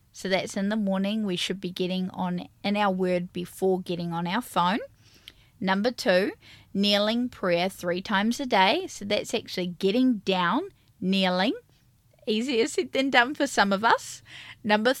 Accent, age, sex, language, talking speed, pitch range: Australian, 20-39, female, English, 165 wpm, 175-210 Hz